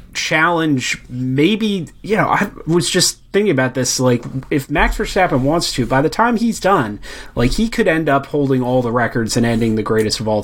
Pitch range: 115-145 Hz